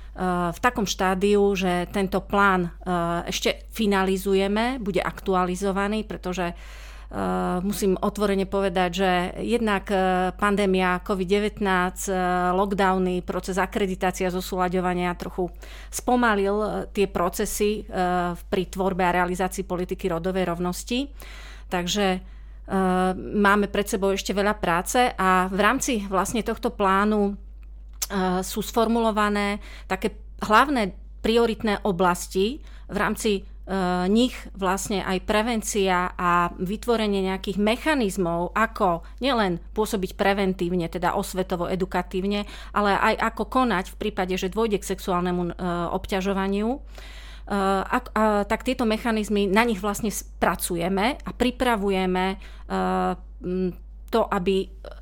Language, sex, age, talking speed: Slovak, female, 30-49, 100 wpm